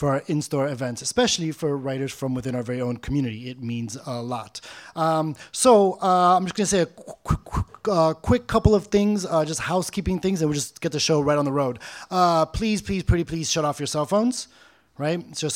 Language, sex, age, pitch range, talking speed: English, male, 20-39, 140-175 Hz, 225 wpm